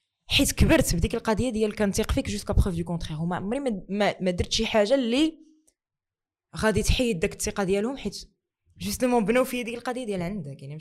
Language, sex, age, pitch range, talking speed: Arabic, female, 20-39, 170-245 Hz, 195 wpm